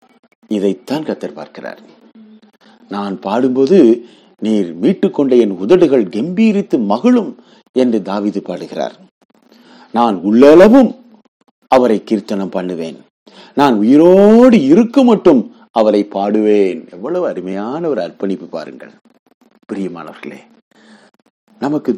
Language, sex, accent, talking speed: Tamil, male, native, 85 wpm